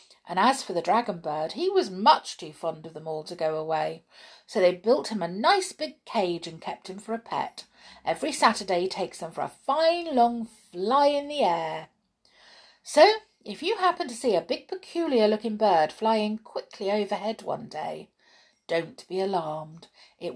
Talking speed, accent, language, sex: 190 wpm, British, English, female